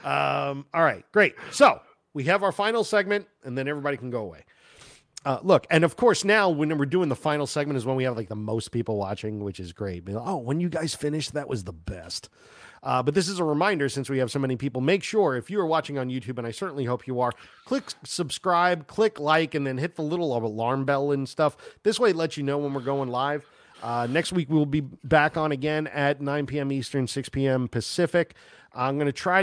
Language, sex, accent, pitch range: English, male, American, 115-155 Hz